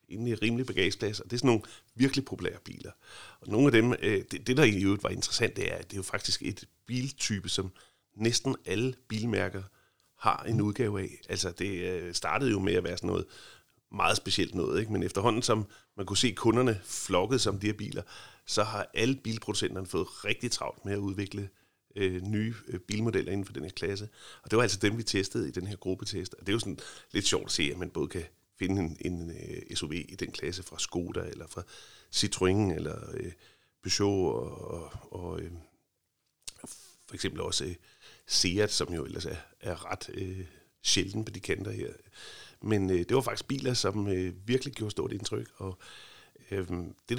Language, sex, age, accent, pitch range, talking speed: Danish, male, 40-59, native, 95-115 Hz, 185 wpm